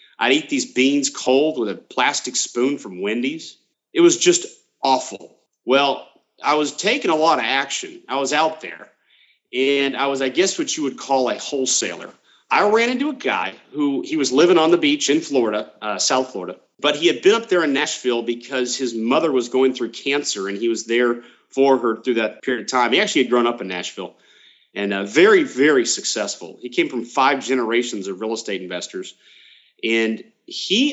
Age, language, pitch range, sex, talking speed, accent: 40-59, English, 120-175 Hz, male, 200 wpm, American